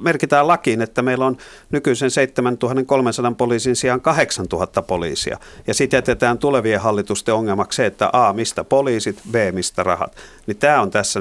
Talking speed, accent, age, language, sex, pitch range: 155 wpm, native, 50-69, Finnish, male, 100-125 Hz